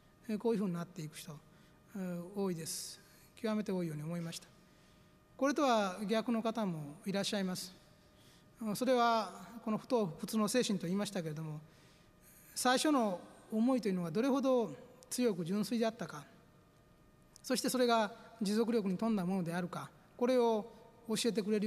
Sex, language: male, Japanese